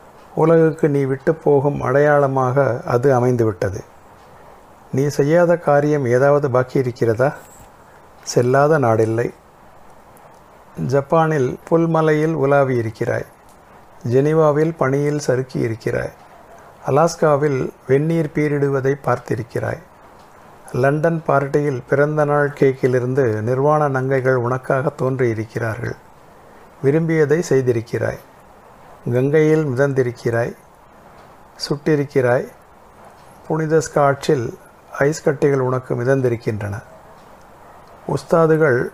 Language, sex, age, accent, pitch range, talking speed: Tamil, male, 60-79, native, 125-150 Hz, 70 wpm